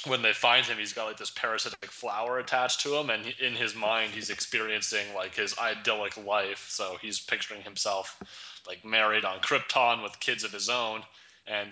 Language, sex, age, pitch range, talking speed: English, male, 20-39, 100-120 Hz, 190 wpm